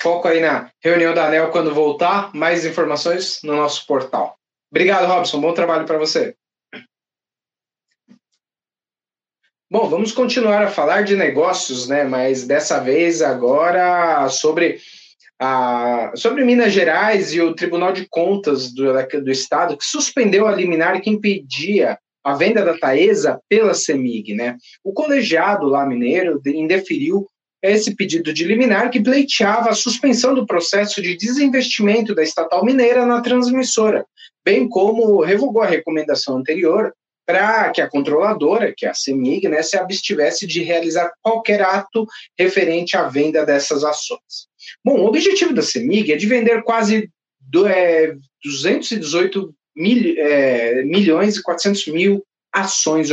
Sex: male